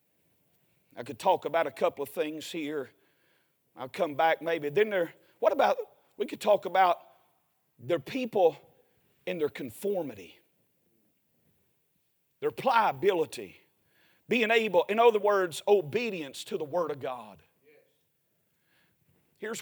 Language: English